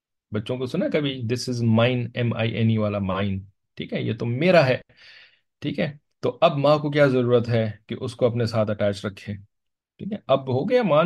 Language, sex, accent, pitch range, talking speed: English, male, Indian, 100-145 Hz, 200 wpm